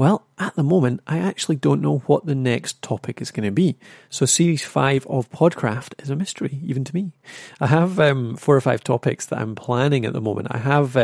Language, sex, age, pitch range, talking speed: English, male, 30-49, 115-150 Hz, 230 wpm